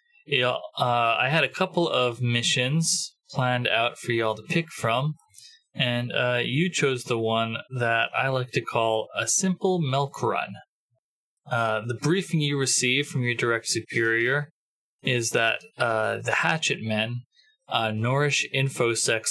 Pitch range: 115-150 Hz